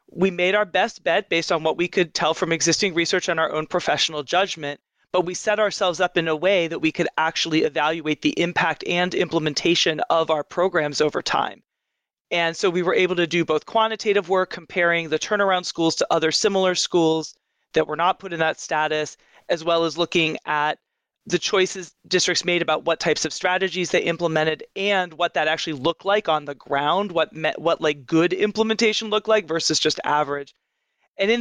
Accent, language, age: American, English, 30-49